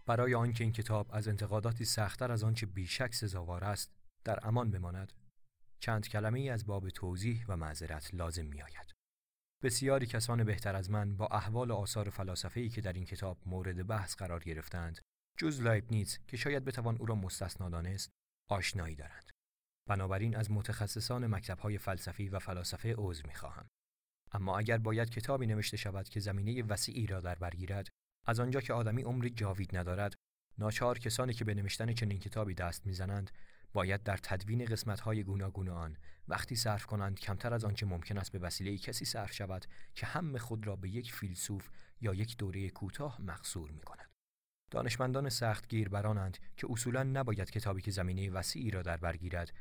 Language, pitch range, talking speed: Persian, 95-115 Hz, 165 wpm